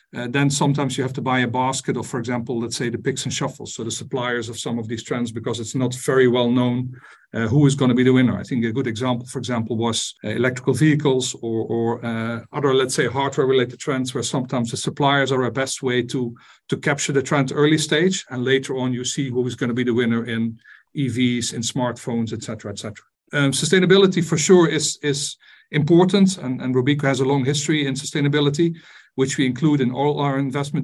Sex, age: male, 50-69